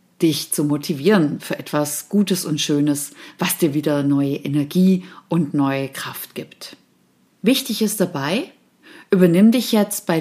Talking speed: 140 wpm